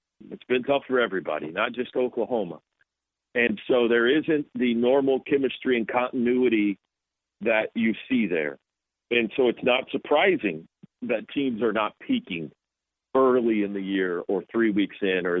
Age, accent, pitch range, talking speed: 50-69, American, 115-150 Hz, 155 wpm